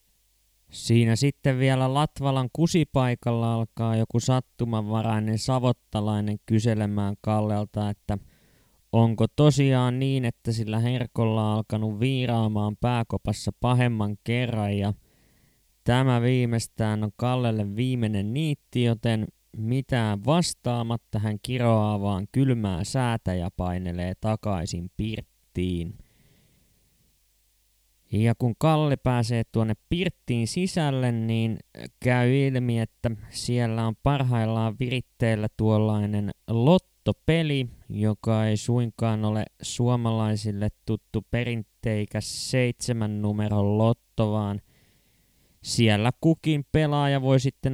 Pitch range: 105-125 Hz